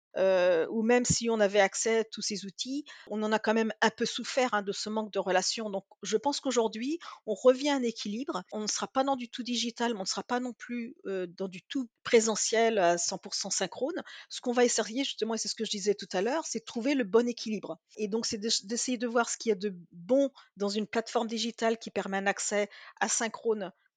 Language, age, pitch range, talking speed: French, 40-59, 205-245 Hz, 250 wpm